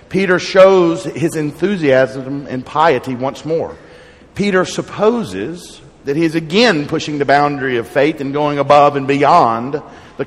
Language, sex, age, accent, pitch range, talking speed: English, male, 50-69, American, 130-170 Hz, 145 wpm